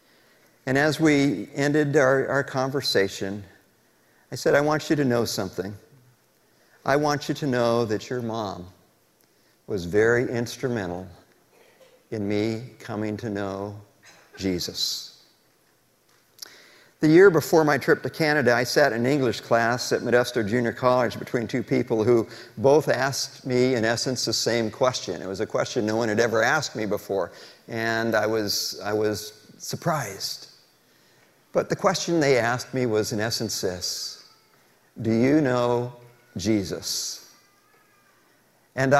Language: English